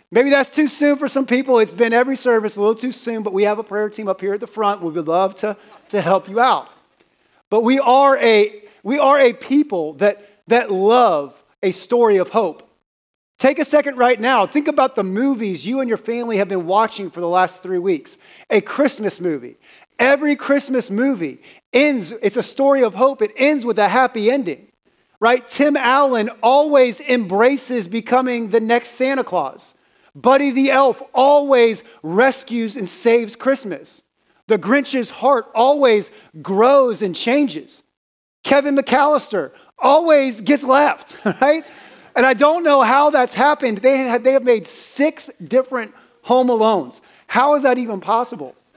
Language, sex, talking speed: English, male, 170 wpm